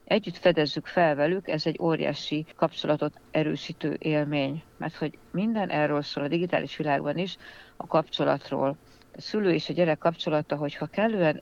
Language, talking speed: Hungarian, 160 wpm